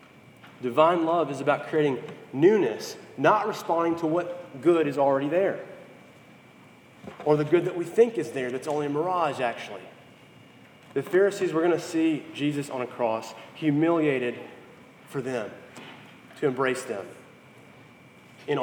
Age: 30-49